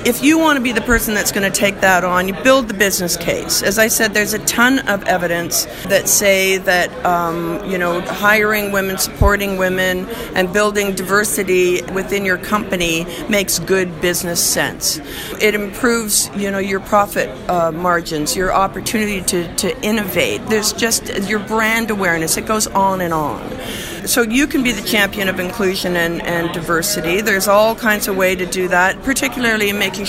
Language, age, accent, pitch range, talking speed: English, 50-69, American, 185-225 Hz, 180 wpm